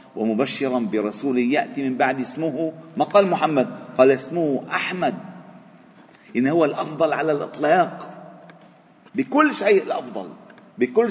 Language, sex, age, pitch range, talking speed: Arabic, male, 40-59, 130-205 Hz, 115 wpm